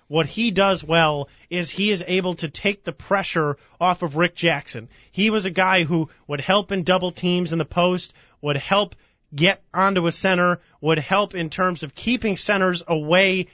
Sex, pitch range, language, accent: male, 160-190 Hz, English, American